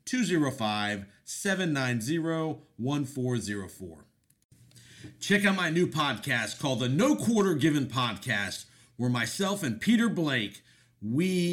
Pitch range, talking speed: 110-145 Hz, 95 wpm